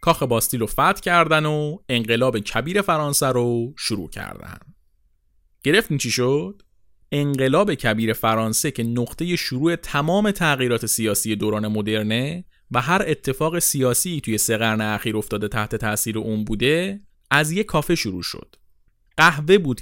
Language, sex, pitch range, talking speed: Persian, male, 110-160 Hz, 130 wpm